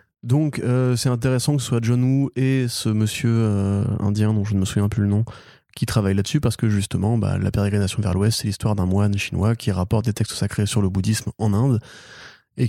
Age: 20-39